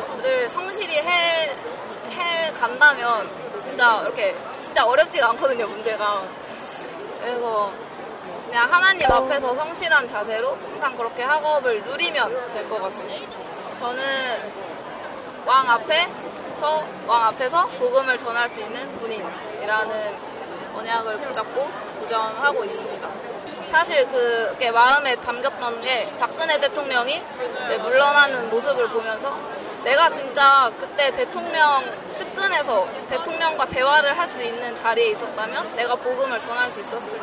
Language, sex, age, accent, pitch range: Korean, female, 20-39, native, 235-330 Hz